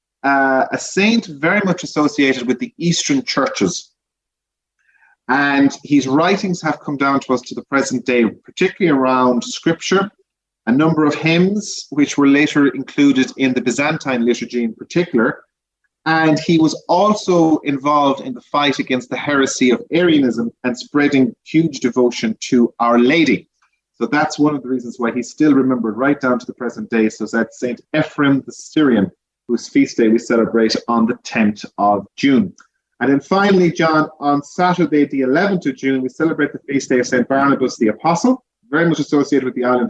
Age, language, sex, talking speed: 30-49, English, male, 175 wpm